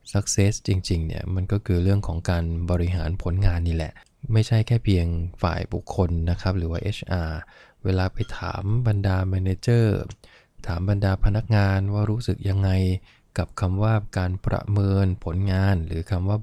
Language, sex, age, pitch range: English, male, 20-39, 90-105 Hz